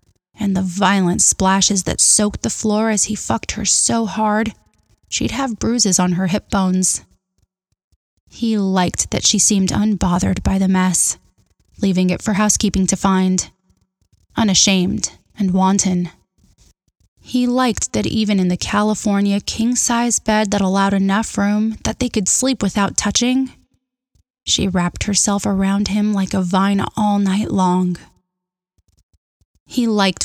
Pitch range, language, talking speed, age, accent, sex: 180-205 Hz, English, 140 wpm, 20-39, American, female